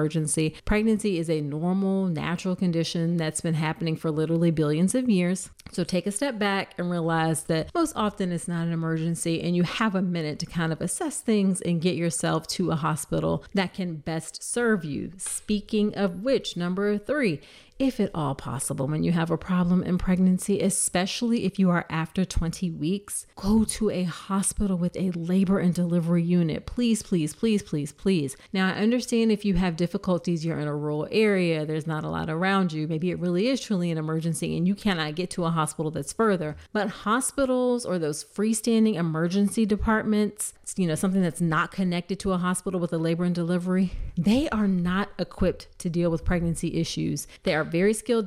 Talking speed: 195 wpm